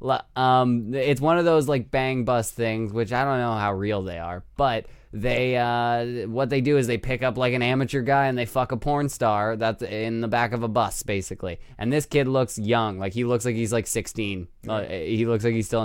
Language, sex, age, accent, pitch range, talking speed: English, male, 20-39, American, 115-145 Hz, 240 wpm